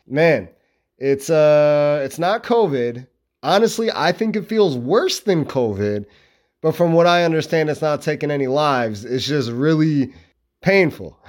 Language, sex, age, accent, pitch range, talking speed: English, male, 30-49, American, 135-190 Hz, 150 wpm